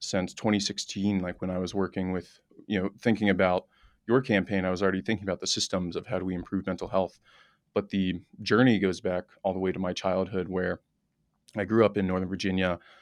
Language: English